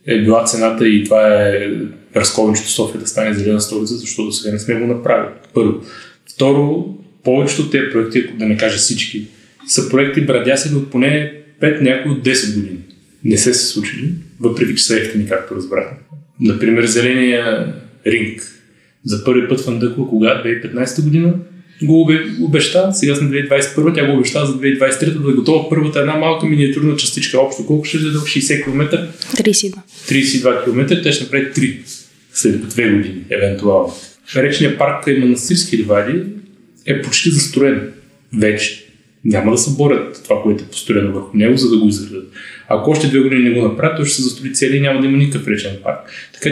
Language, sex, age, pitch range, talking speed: English, male, 20-39, 110-150 Hz, 180 wpm